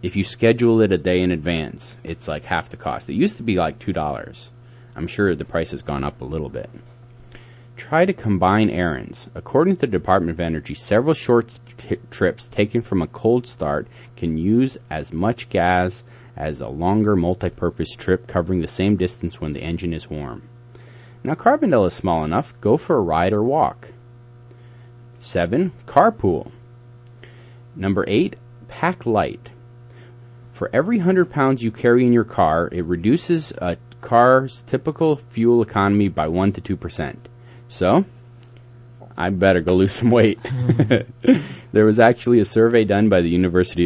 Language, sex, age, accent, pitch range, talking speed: English, male, 30-49, American, 95-120 Hz, 165 wpm